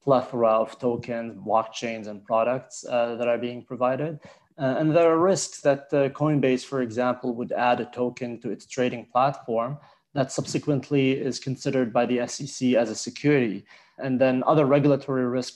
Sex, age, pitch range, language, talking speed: male, 20-39, 120-135 Hz, English, 170 wpm